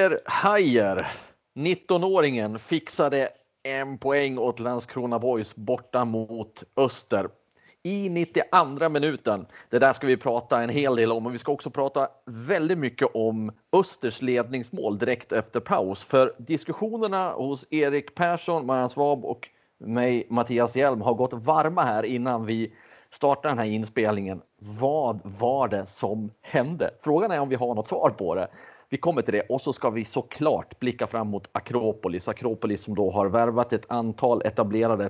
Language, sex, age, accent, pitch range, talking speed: Swedish, male, 30-49, native, 105-135 Hz, 155 wpm